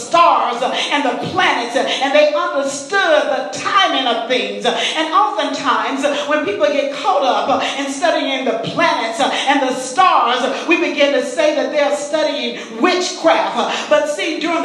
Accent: American